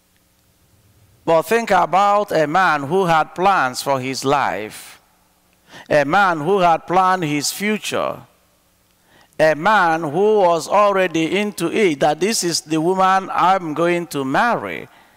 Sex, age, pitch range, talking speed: male, 50-69, 105-175 Hz, 135 wpm